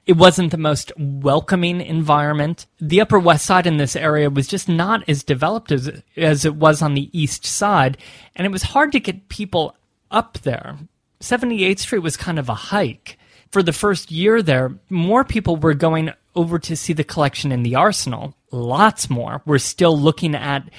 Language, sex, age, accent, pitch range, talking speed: English, male, 30-49, American, 135-175 Hz, 190 wpm